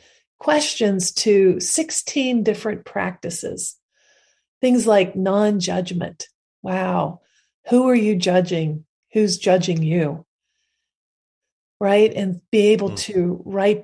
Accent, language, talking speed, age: American, English, 95 wpm, 40-59